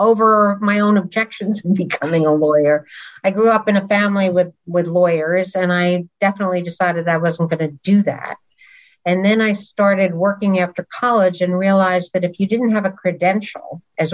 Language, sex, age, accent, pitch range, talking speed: English, female, 60-79, American, 175-205 Hz, 185 wpm